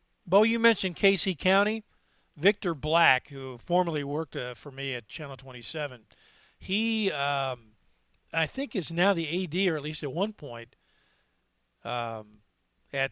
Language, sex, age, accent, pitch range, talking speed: English, male, 50-69, American, 120-180 Hz, 145 wpm